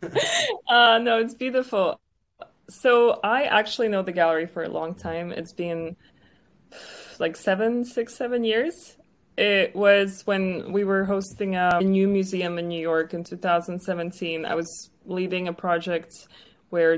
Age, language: 20-39, English